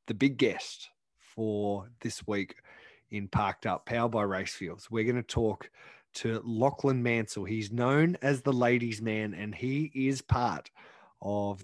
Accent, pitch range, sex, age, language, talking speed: Australian, 105-135 Hz, male, 20-39, English, 155 wpm